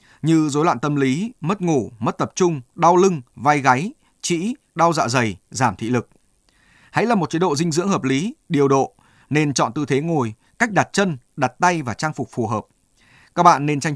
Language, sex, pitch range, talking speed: Vietnamese, male, 125-170 Hz, 220 wpm